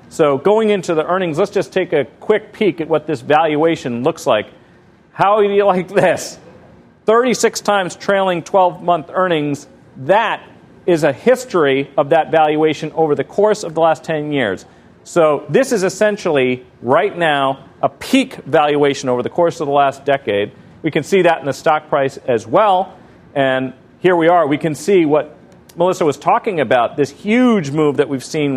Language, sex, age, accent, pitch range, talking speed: English, male, 40-59, American, 140-190 Hz, 180 wpm